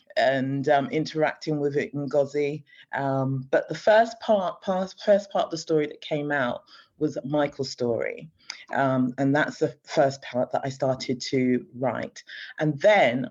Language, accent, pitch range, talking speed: English, British, 130-155 Hz, 155 wpm